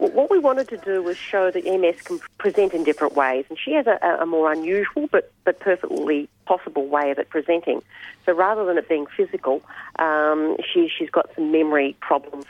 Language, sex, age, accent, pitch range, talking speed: English, female, 40-59, Australian, 155-250 Hz, 200 wpm